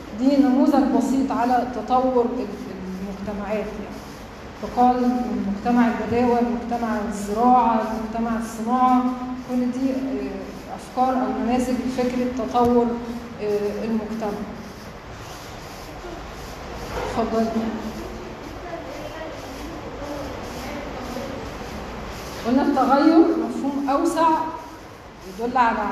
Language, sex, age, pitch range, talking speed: Arabic, female, 20-39, 225-265 Hz, 65 wpm